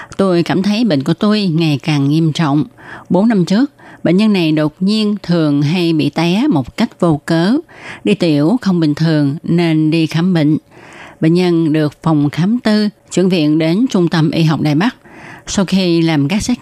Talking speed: 200 wpm